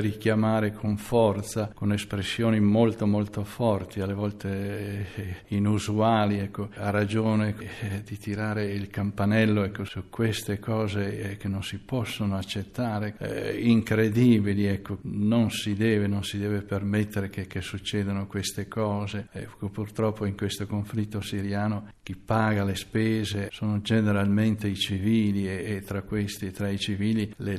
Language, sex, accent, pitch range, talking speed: Italian, male, native, 100-110 Hz, 145 wpm